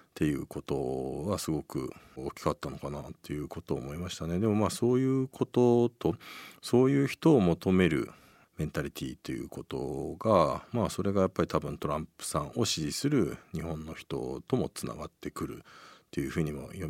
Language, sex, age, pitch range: Japanese, male, 50-69, 80-125 Hz